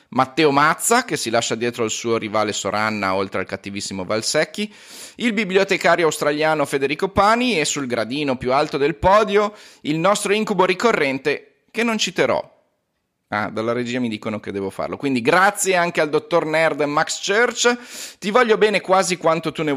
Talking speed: 170 wpm